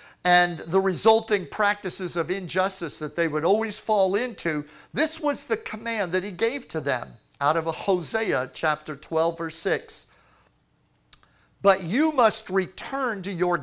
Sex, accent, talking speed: male, American, 150 wpm